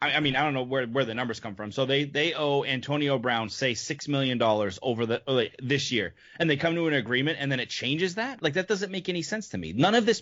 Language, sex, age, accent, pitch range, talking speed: English, male, 20-39, American, 125-180 Hz, 275 wpm